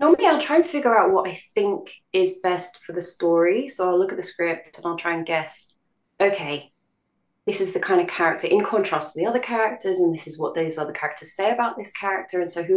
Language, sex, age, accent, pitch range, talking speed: English, female, 20-39, British, 170-265 Hz, 245 wpm